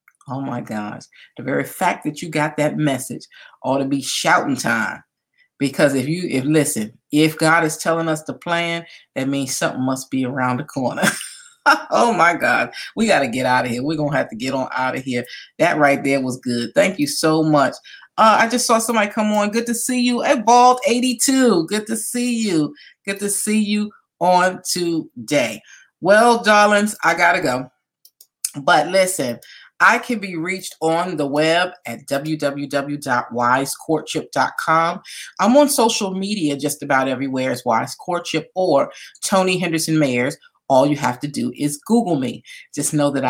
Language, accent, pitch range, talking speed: English, American, 140-205 Hz, 180 wpm